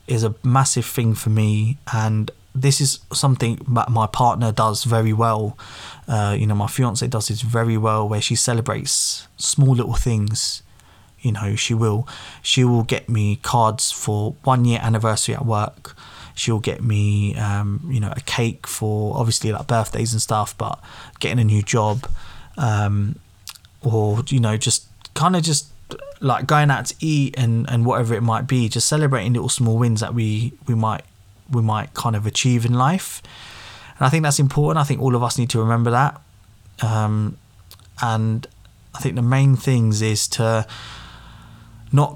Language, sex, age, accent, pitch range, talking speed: English, male, 20-39, British, 110-130 Hz, 175 wpm